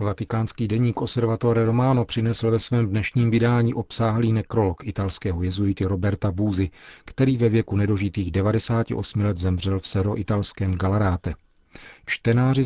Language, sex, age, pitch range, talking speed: Czech, male, 40-59, 95-110 Hz, 130 wpm